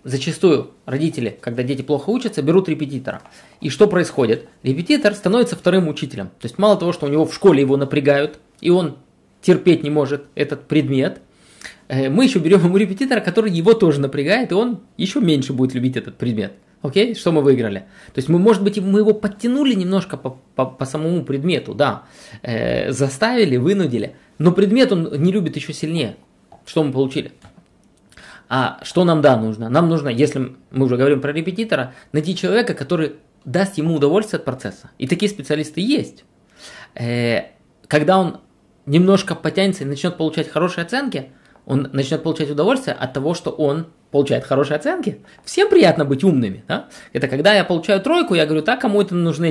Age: 20-39